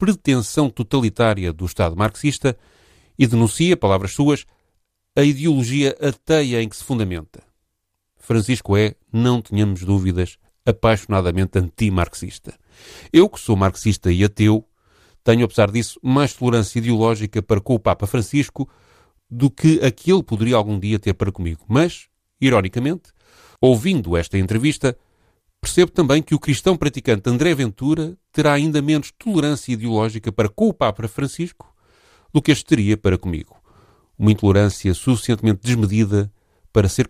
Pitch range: 95-140 Hz